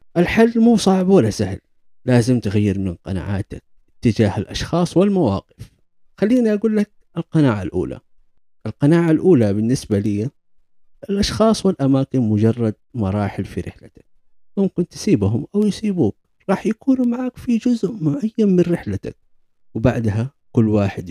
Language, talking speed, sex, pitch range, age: Arabic, 120 wpm, male, 95-160 Hz, 50-69